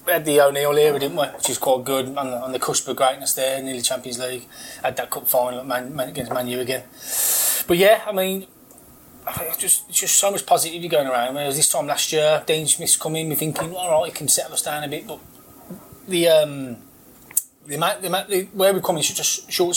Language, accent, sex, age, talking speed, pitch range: English, British, male, 20-39, 230 wpm, 135-170 Hz